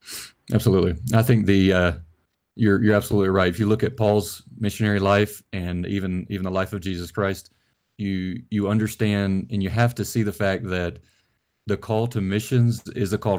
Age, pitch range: 30-49, 95-110 Hz